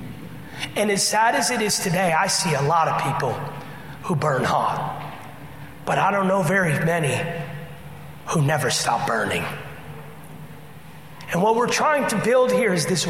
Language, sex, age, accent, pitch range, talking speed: English, male, 30-49, American, 150-175 Hz, 160 wpm